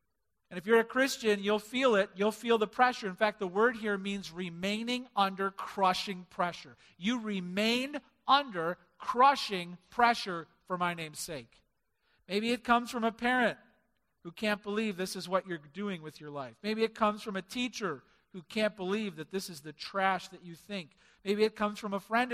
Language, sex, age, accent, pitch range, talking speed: English, male, 50-69, American, 155-215 Hz, 190 wpm